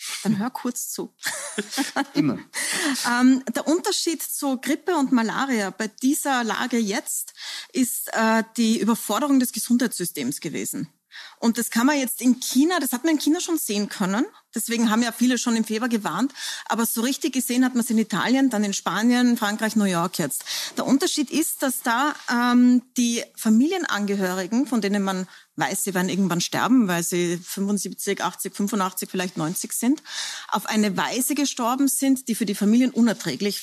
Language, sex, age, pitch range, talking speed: German, female, 30-49, 205-265 Hz, 170 wpm